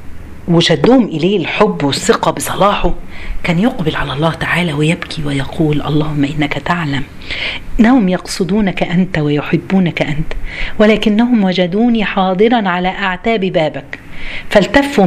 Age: 40-59